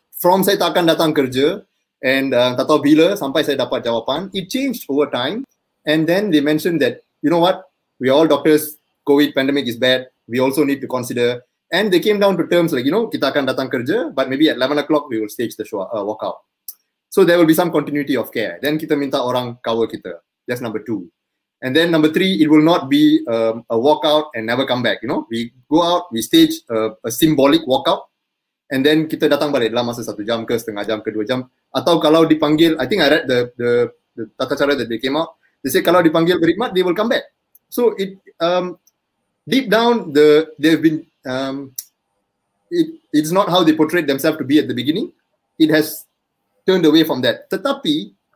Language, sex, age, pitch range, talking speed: Malay, male, 20-39, 130-175 Hz, 215 wpm